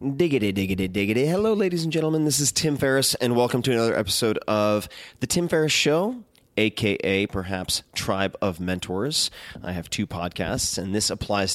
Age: 30-49